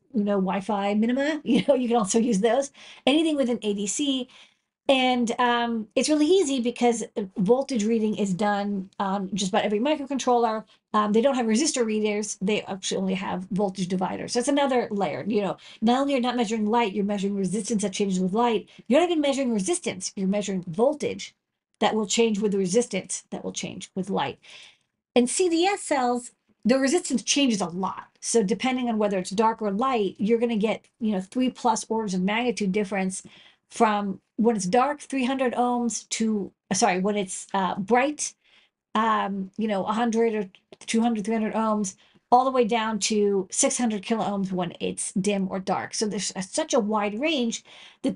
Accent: American